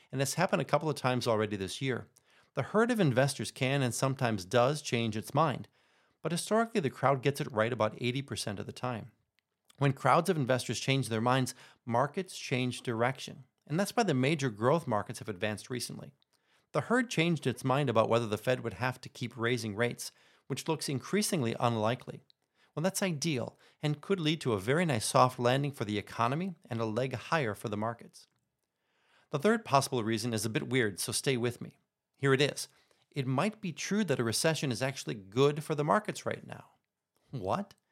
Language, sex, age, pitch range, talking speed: English, male, 40-59, 120-155 Hz, 200 wpm